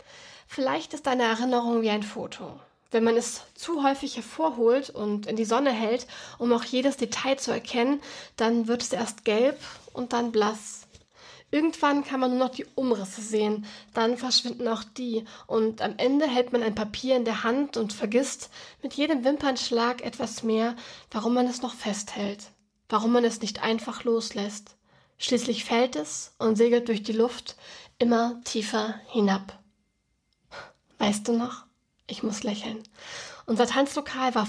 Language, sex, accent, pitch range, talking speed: German, female, German, 215-250 Hz, 160 wpm